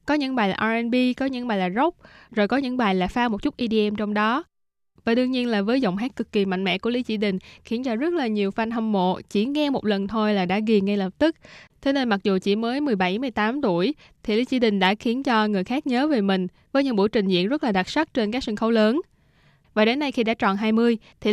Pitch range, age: 195-255 Hz, 10-29